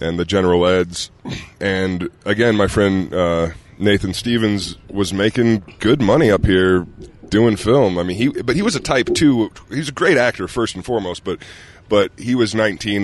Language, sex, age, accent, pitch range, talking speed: English, male, 20-39, American, 90-110 Hz, 185 wpm